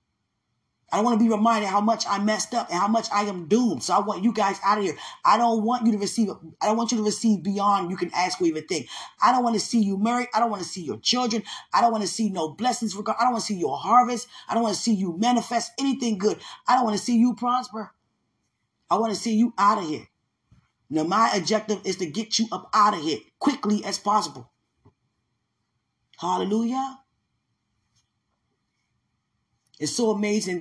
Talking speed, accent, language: 225 wpm, American, English